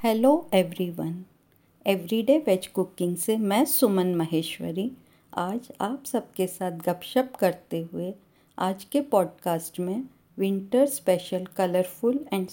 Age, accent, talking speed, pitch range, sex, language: 50-69, native, 115 wpm, 175-210 Hz, female, Hindi